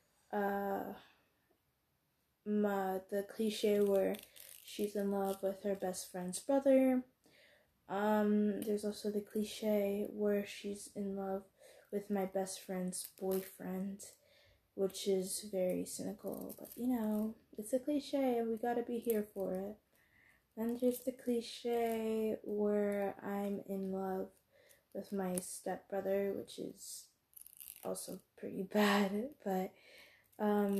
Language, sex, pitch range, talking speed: English, female, 195-230 Hz, 120 wpm